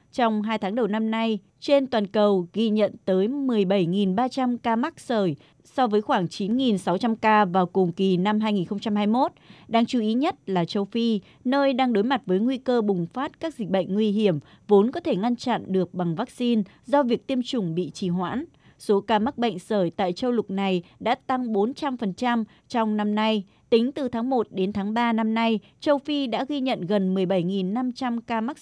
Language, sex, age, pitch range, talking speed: Vietnamese, female, 20-39, 195-245 Hz, 200 wpm